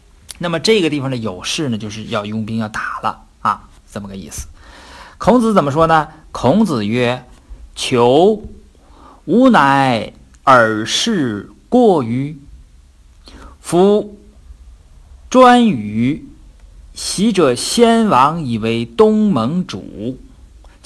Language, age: Chinese, 50-69